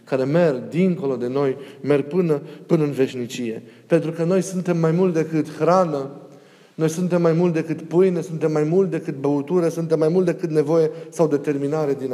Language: Romanian